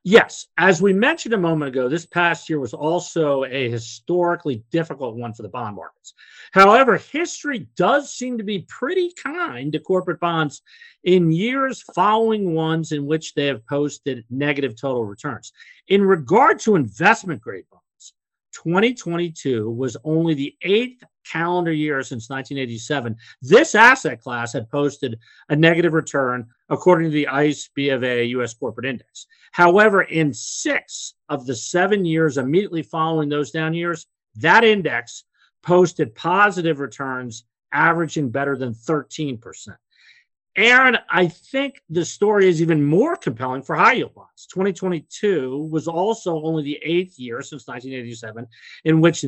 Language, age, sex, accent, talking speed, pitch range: English, 50-69, male, American, 145 wpm, 140-185 Hz